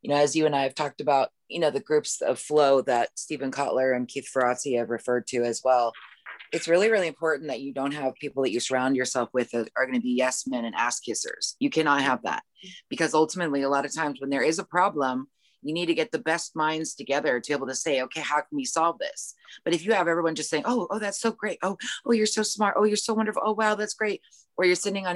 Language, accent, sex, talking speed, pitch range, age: English, American, female, 270 wpm, 140-190 Hz, 30-49